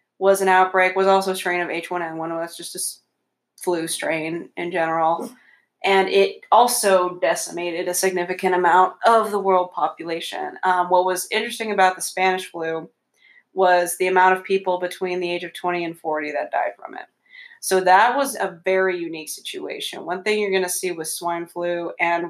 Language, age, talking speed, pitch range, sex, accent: English, 20-39, 190 wpm, 170-200 Hz, female, American